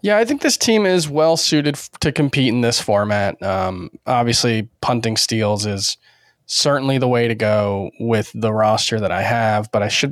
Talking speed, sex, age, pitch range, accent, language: 185 wpm, male, 20-39, 110-145 Hz, American, English